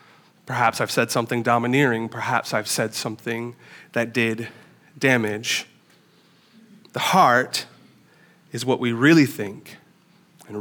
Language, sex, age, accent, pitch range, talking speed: English, male, 30-49, American, 125-180 Hz, 115 wpm